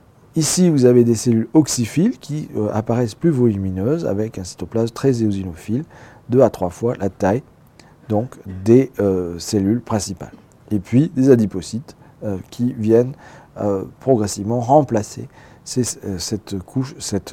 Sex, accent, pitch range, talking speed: male, French, 105-135 Hz, 145 wpm